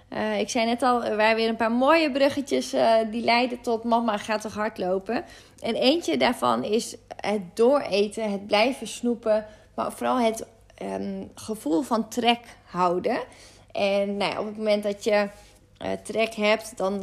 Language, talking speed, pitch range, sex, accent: Dutch, 165 wpm, 210-245 Hz, female, Dutch